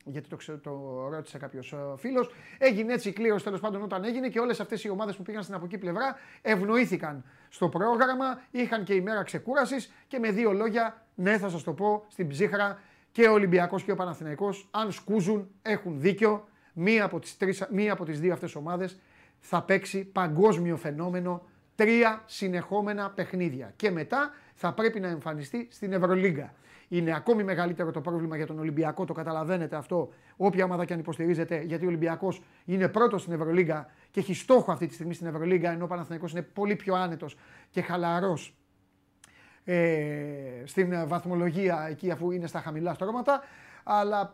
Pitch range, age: 165-210 Hz, 30-49